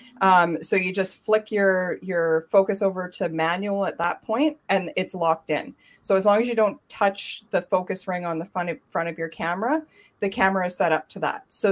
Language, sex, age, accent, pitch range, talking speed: English, female, 30-49, American, 170-205 Hz, 215 wpm